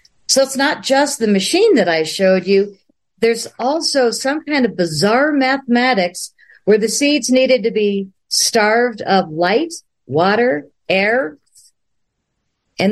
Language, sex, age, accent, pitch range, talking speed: English, female, 50-69, American, 185-240 Hz, 135 wpm